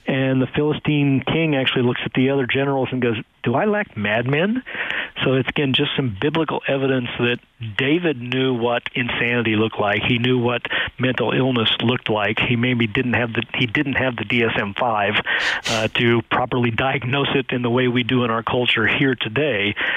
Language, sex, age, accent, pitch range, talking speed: English, male, 50-69, American, 120-135 Hz, 185 wpm